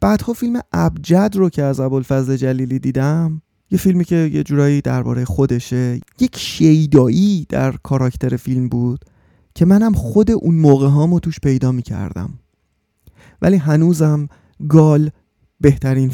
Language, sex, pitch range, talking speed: Persian, male, 125-160 Hz, 135 wpm